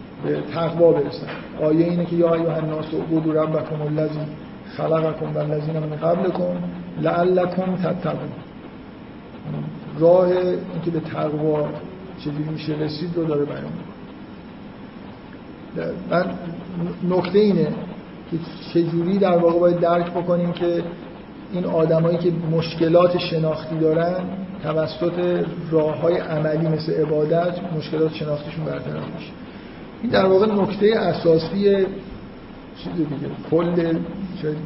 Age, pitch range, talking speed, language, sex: 50-69, 160-185 Hz, 100 wpm, Persian, male